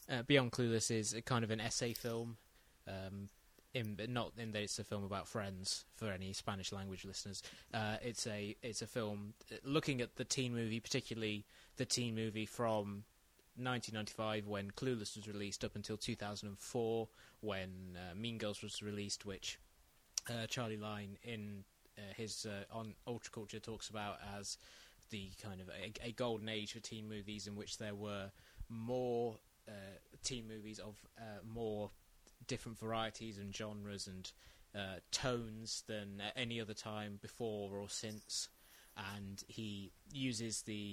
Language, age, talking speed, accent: English, 20-39, 160 wpm, British